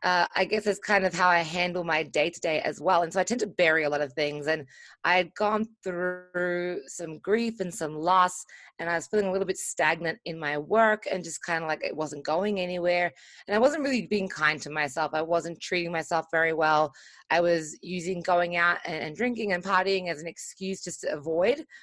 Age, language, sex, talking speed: 20-39, English, female, 225 wpm